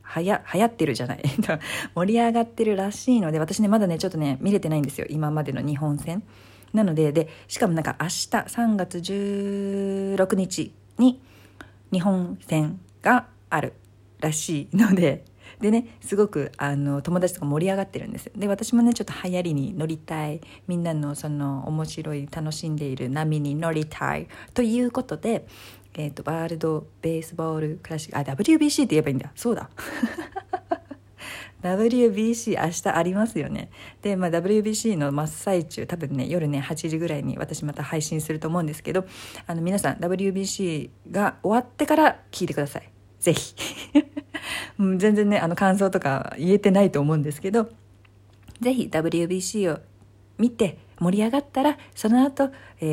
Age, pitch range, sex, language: 40-59, 150-215 Hz, female, Japanese